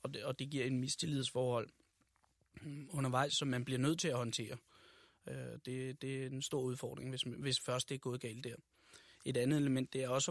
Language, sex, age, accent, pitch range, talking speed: Danish, male, 30-49, native, 120-140 Hz, 205 wpm